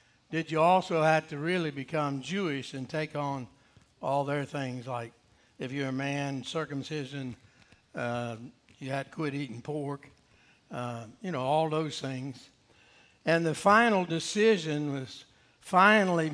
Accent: American